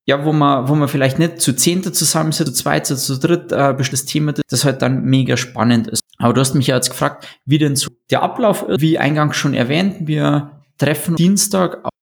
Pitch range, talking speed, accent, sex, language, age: 130-160 Hz, 235 wpm, German, male, German, 20-39